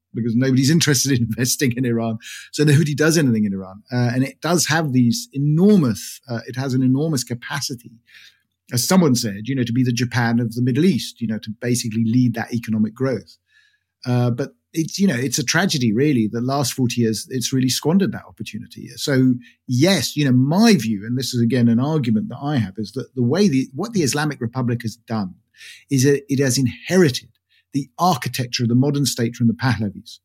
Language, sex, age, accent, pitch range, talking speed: English, male, 50-69, British, 110-130 Hz, 210 wpm